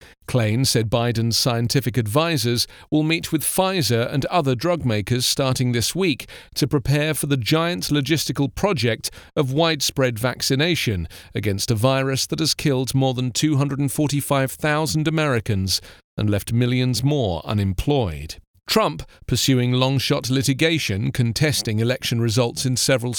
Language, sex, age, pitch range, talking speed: English, male, 40-59, 115-155 Hz, 130 wpm